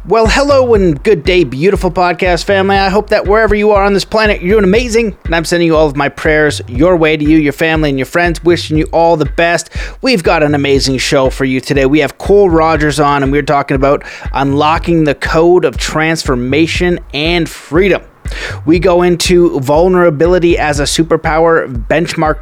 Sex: male